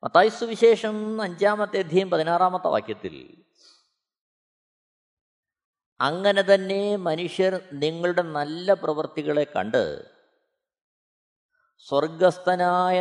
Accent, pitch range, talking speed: native, 145-205 Hz, 65 wpm